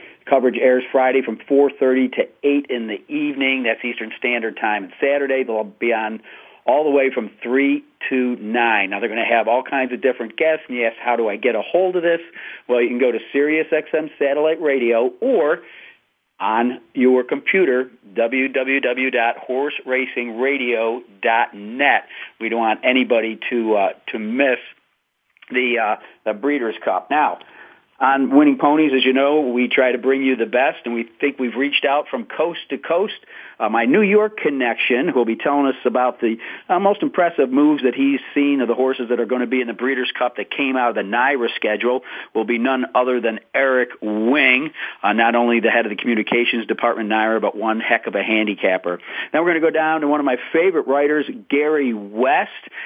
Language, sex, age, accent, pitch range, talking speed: English, male, 40-59, American, 115-140 Hz, 195 wpm